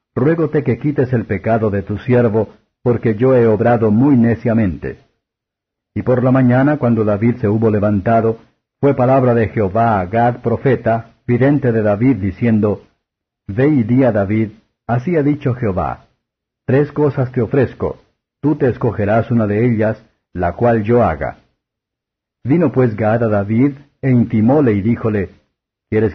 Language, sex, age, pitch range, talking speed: Spanish, male, 50-69, 110-130 Hz, 155 wpm